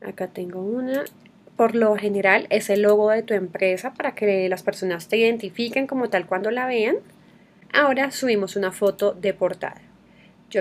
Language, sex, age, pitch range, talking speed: Spanish, female, 30-49, 200-235 Hz, 170 wpm